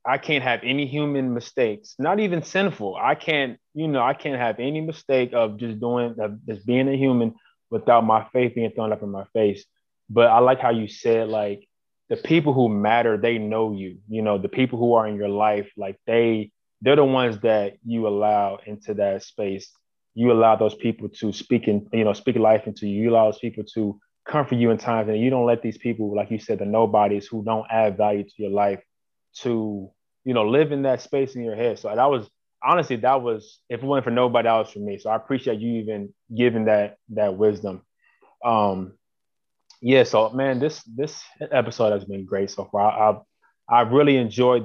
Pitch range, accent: 105-125 Hz, American